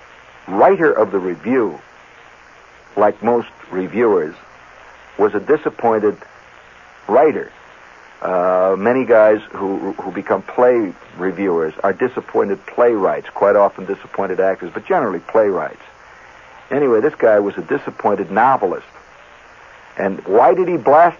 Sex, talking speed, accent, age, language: male, 115 wpm, American, 60-79, English